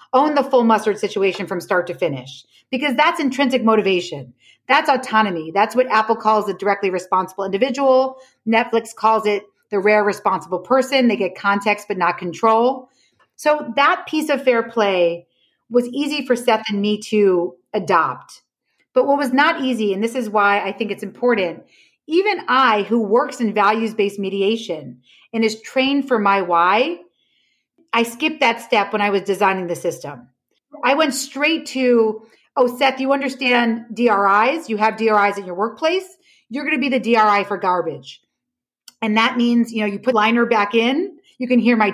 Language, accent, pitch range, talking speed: English, American, 200-260 Hz, 175 wpm